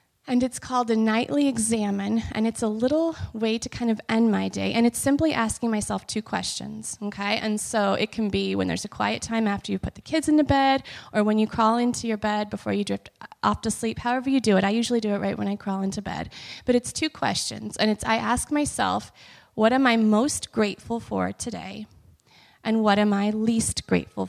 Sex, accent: female, American